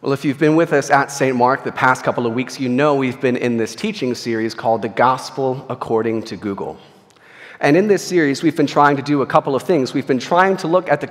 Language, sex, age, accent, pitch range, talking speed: English, male, 30-49, American, 125-160 Hz, 260 wpm